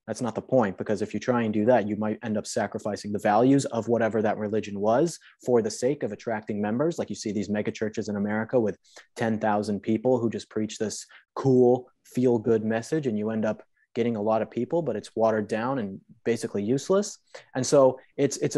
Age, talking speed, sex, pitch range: 30-49, 220 wpm, male, 105-130 Hz